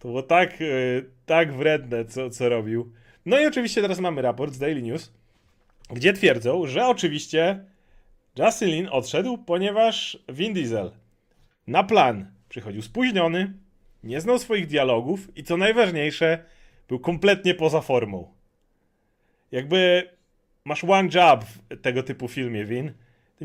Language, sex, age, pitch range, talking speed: Polish, male, 30-49, 125-175 Hz, 135 wpm